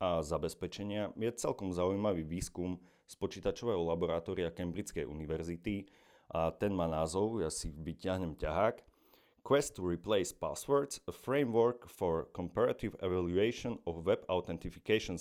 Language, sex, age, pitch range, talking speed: Slovak, male, 40-59, 90-115 Hz, 120 wpm